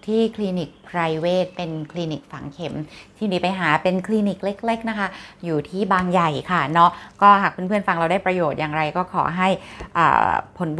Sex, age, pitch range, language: female, 20-39, 175-210 Hz, Thai